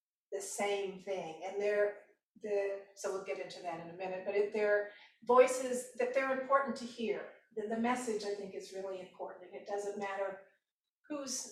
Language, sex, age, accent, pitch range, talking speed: English, female, 50-69, American, 200-245 Hz, 190 wpm